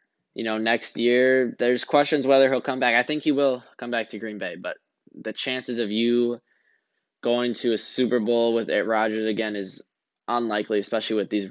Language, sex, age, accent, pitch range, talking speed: English, male, 10-29, American, 105-120 Hz, 200 wpm